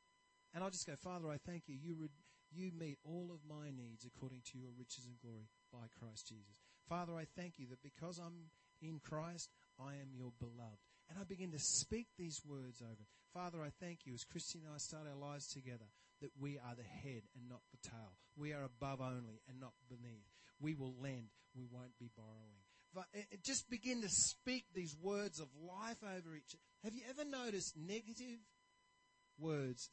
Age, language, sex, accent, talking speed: 40-59, English, male, Australian, 195 wpm